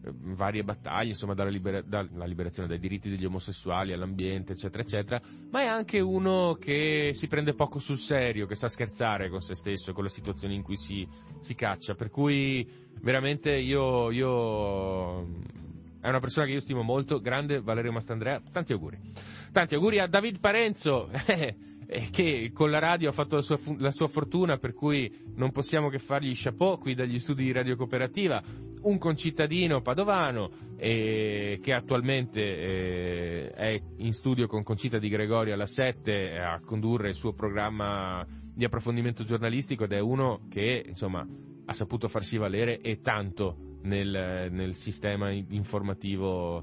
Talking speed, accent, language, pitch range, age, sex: 160 wpm, native, Italian, 100-135 Hz, 30-49, male